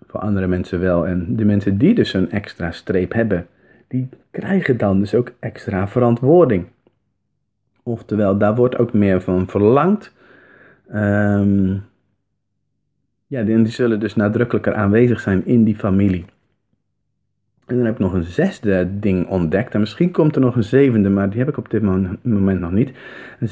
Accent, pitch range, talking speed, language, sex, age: Dutch, 100-125 Hz, 160 wpm, Dutch, male, 40-59